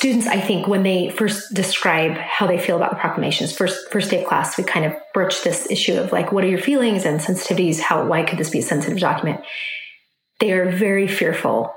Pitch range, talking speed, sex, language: 180-215 Hz, 225 wpm, female, English